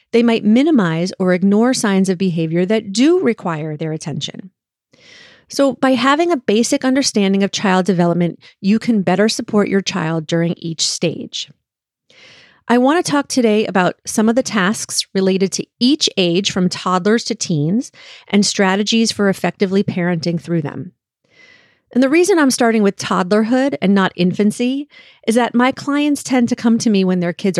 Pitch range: 185-245 Hz